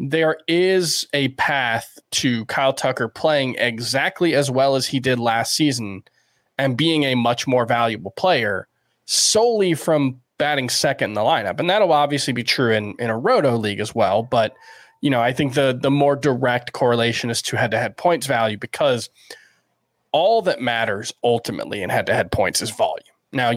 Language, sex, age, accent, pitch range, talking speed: English, male, 20-39, American, 120-145 Hz, 185 wpm